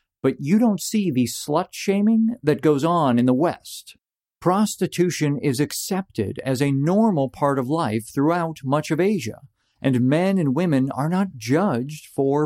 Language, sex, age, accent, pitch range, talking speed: English, male, 50-69, American, 125-180 Hz, 160 wpm